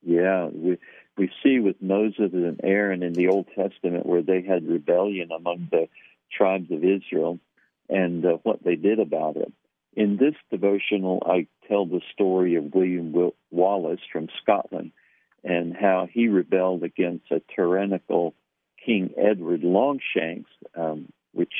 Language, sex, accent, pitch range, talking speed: English, male, American, 85-95 Hz, 145 wpm